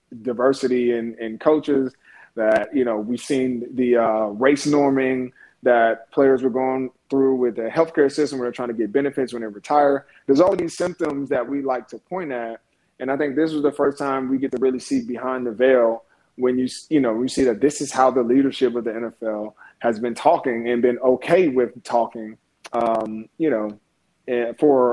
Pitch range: 115-135 Hz